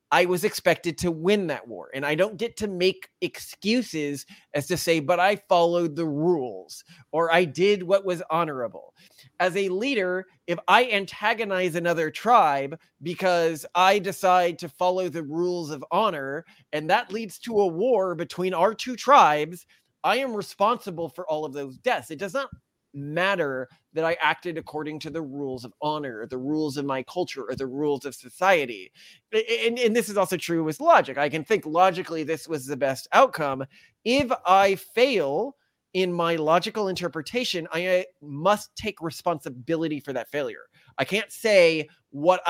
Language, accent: English, American